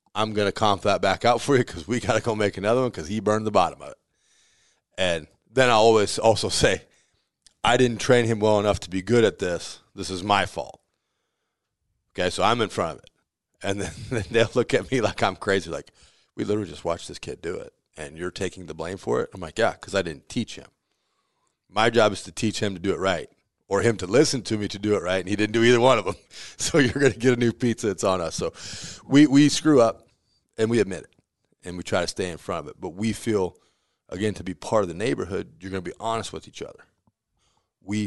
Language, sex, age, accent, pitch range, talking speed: English, male, 30-49, American, 95-115 Hz, 255 wpm